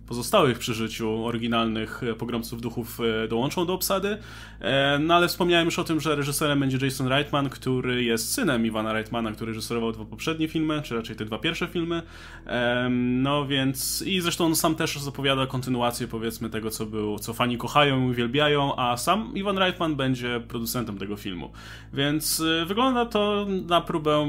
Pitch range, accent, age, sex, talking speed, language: 115-150 Hz, native, 20-39, male, 165 wpm, Polish